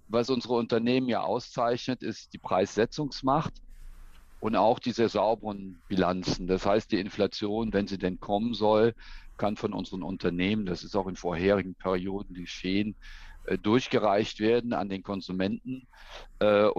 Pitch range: 95-115 Hz